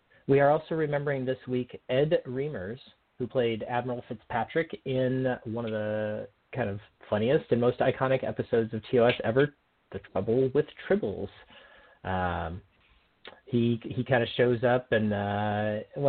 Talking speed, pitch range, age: 145 wpm, 100-130 Hz, 30-49